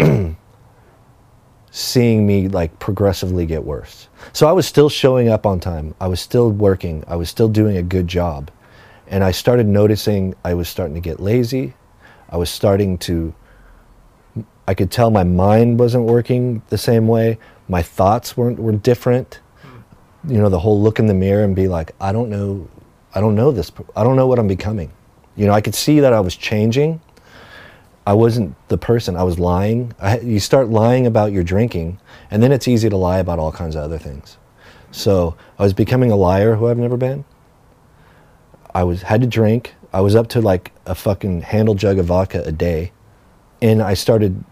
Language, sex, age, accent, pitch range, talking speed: English, male, 30-49, American, 90-115 Hz, 195 wpm